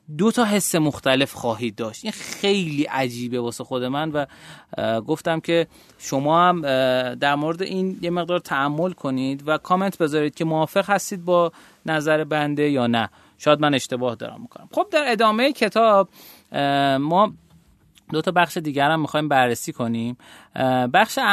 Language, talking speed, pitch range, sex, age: Persian, 150 wpm, 130-200 Hz, male, 30-49